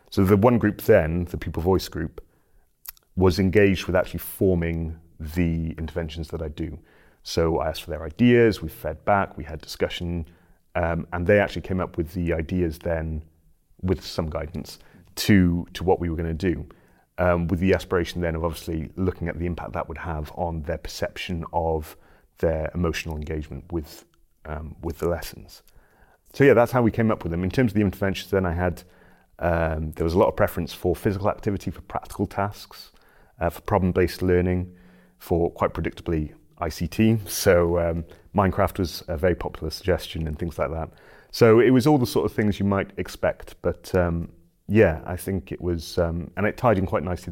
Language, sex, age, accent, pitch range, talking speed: English, male, 30-49, British, 80-95 Hz, 195 wpm